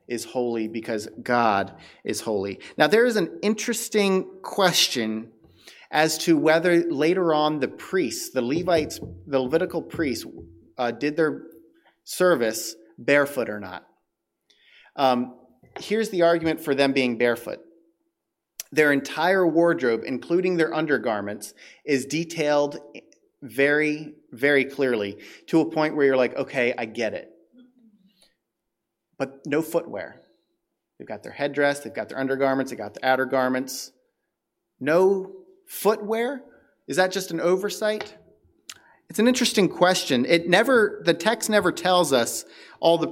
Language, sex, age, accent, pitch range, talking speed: English, male, 30-49, American, 125-175 Hz, 135 wpm